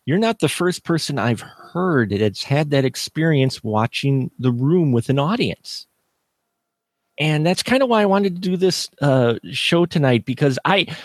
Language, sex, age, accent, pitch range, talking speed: English, male, 30-49, American, 115-170 Hz, 175 wpm